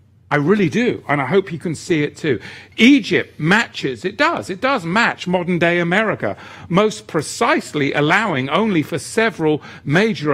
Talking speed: 155 wpm